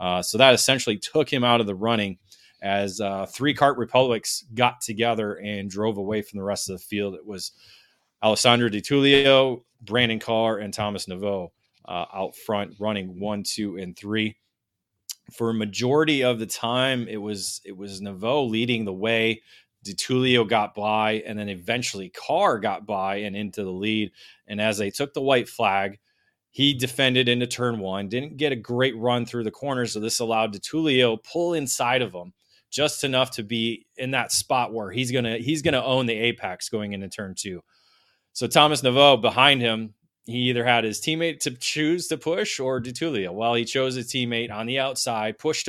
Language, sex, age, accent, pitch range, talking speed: English, male, 20-39, American, 105-125 Hz, 195 wpm